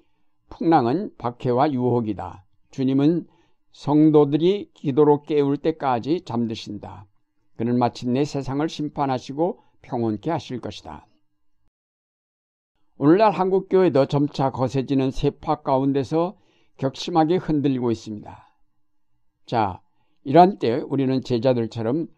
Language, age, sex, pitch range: Korean, 60-79, male, 120-155 Hz